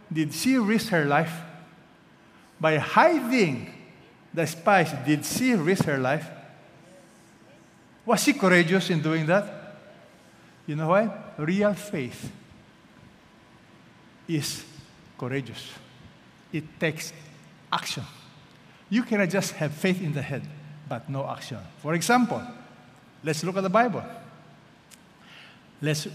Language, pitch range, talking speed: English, 145-200 Hz, 110 wpm